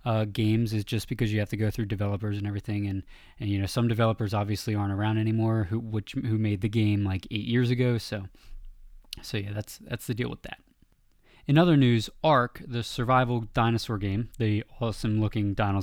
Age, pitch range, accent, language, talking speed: 20-39, 110-130 Hz, American, English, 205 wpm